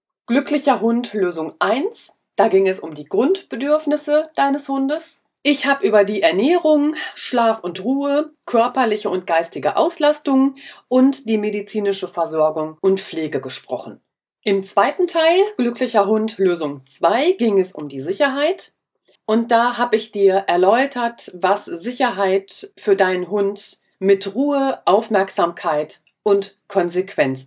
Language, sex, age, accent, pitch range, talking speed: German, female, 30-49, German, 185-260 Hz, 130 wpm